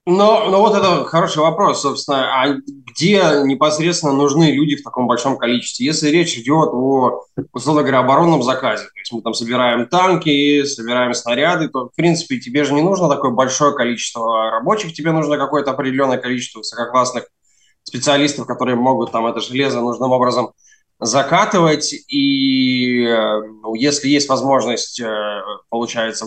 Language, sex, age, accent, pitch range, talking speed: Russian, male, 20-39, native, 120-155 Hz, 145 wpm